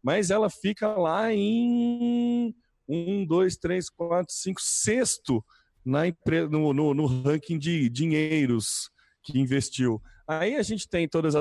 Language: Portuguese